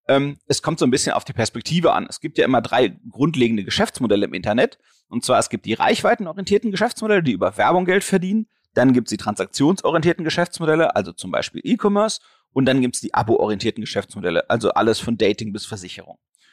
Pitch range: 115-155 Hz